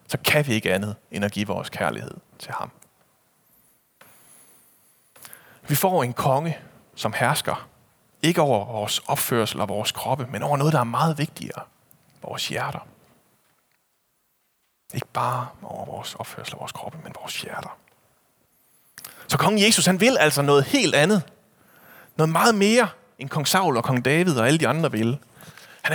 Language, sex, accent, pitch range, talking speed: Danish, male, native, 115-165 Hz, 160 wpm